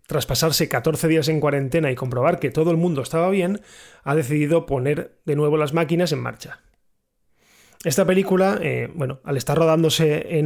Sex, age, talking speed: male, 30-49, 180 wpm